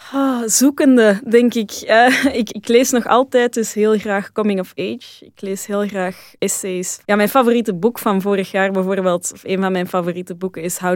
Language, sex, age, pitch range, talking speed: Dutch, female, 20-39, 180-215 Hz, 205 wpm